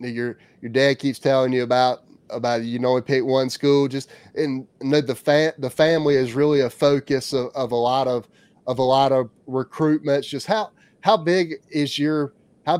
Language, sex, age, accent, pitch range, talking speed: English, male, 30-49, American, 125-150 Hz, 190 wpm